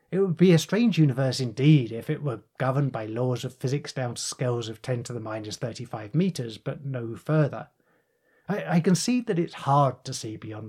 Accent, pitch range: British, 120-160 Hz